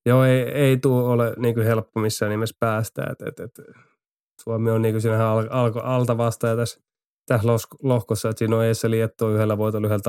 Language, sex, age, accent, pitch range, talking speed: Finnish, male, 20-39, native, 105-115 Hz, 185 wpm